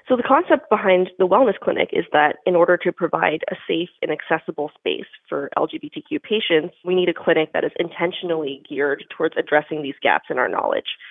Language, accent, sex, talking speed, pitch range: English, American, female, 195 wpm, 160-225 Hz